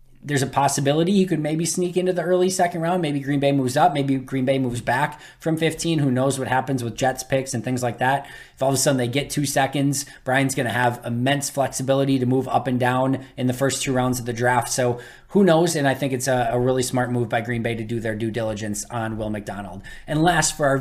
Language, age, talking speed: English, 20-39, 260 wpm